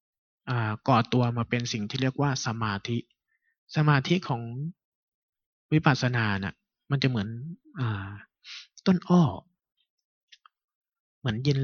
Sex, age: male, 20-39